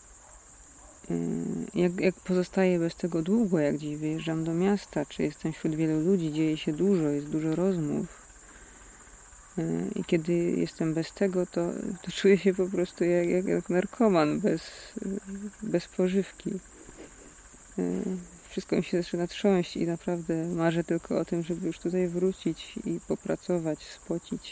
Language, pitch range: Polish, 165-195 Hz